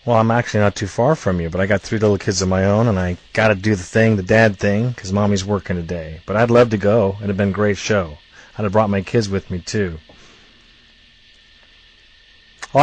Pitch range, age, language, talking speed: 100-125 Hz, 40-59, English, 240 wpm